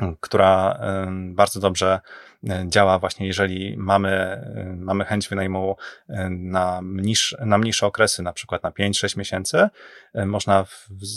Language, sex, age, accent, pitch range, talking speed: Polish, male, 30-49, native, 95-110 Hz, 120 wpm